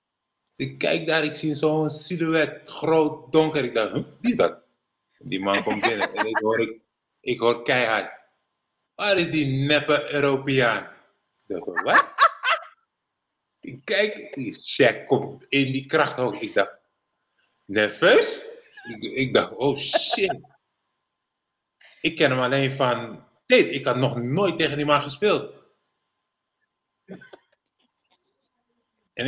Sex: male